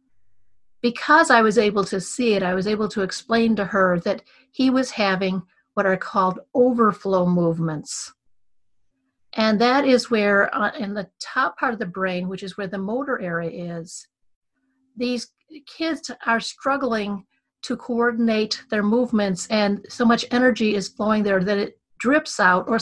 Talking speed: 160 wpm